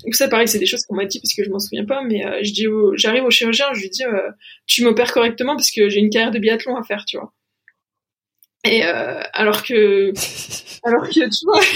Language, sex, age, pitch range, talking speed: French, female, 20-39, 215-255 Hz, 250 wpm